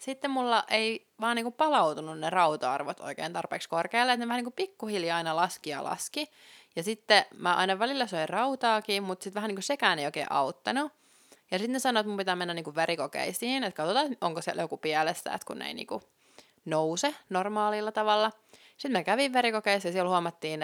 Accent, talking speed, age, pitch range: native, 200 wpm, 20-39, 160-220 Hz